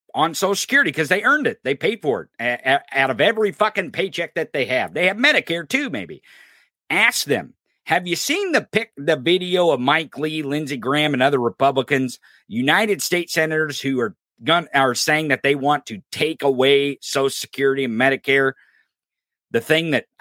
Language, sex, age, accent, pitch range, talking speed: English, male, 50-69, American, 140-195 Hz, 190 wpm